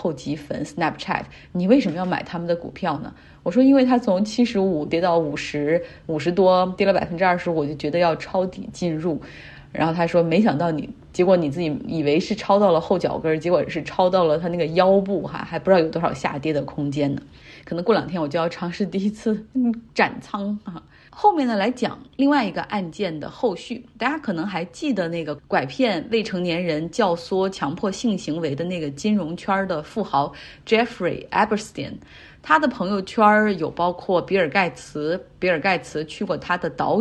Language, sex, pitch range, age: Chinese, female, 165-210 Hz, 30-49